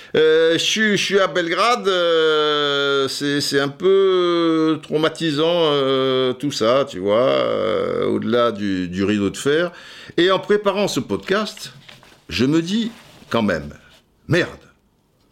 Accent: French